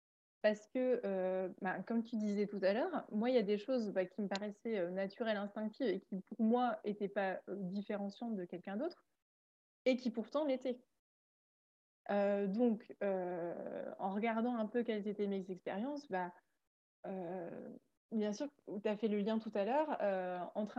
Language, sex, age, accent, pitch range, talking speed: French, female, 20-39, French, 195-250 Hz, 165 wpm